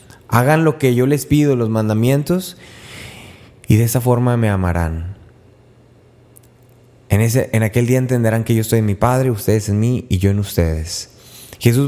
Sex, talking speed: male, 170 wpm